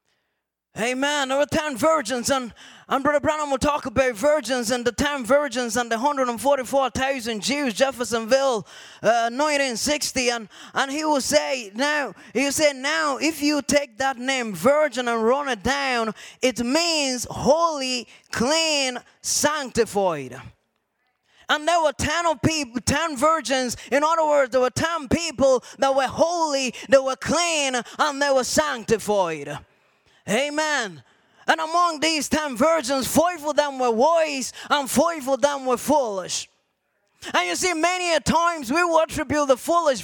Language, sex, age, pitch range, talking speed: English, male, 20-39, 255-315 Hz, 155 wpm